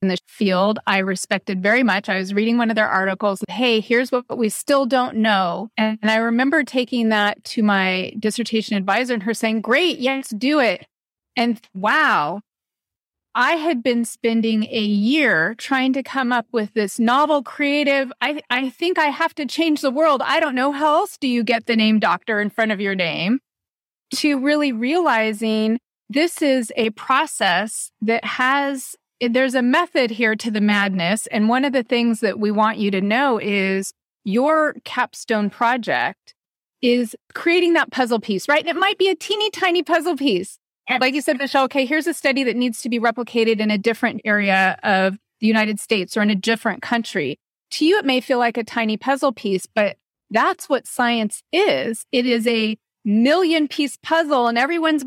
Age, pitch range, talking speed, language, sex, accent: 30-49, 215-275 Hz, 190 wpm, English, female, American